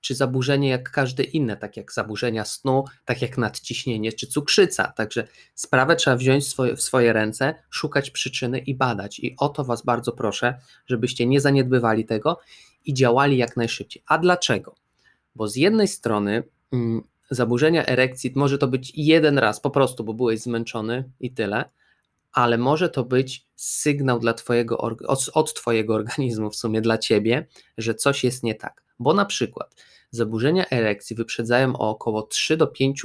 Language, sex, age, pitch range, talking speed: Polish, male, 20-39, 115-135 Hz, 165 wpm